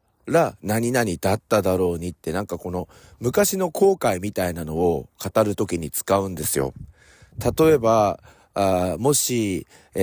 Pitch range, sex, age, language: 90-135 Hz, male, 40-59, Japanese